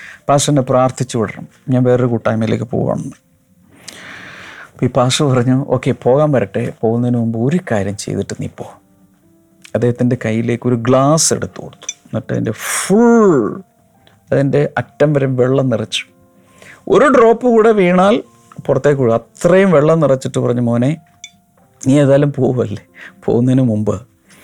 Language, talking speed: Malayalam, 120 wpm